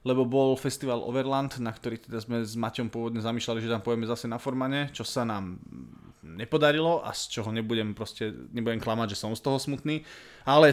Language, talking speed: Slovak, 195 wpm